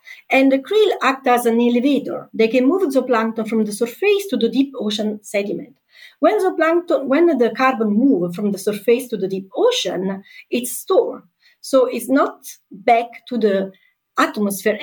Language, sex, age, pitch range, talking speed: English, female, 40-59, 215-305 Hz, 165 wpm